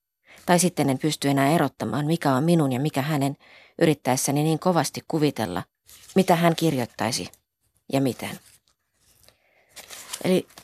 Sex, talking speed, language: female, 125 wpm, Finnish